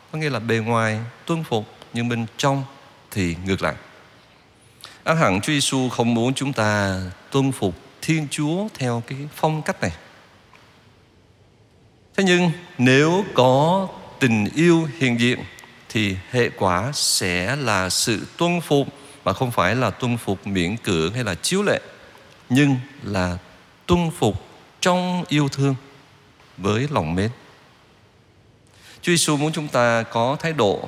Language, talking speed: Vietnamese, 150 wpm